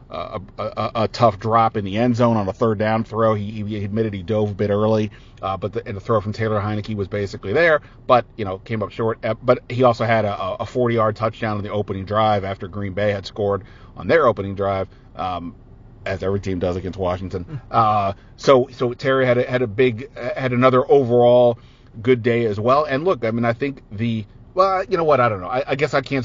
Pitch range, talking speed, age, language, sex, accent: 105-125 Hz, 235 wpm, 40-59, English, male, American